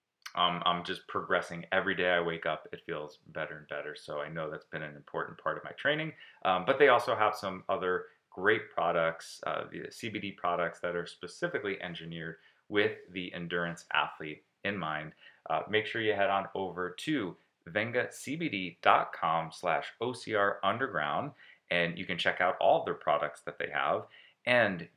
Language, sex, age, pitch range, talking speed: English, male, 30-49, 85-100 Hz, 175 wpm